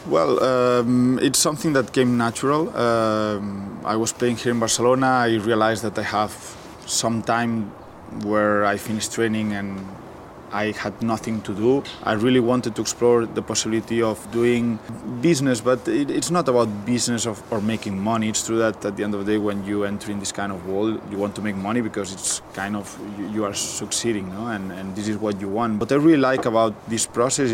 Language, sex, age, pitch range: English, male, 20-39, 105-120 Hz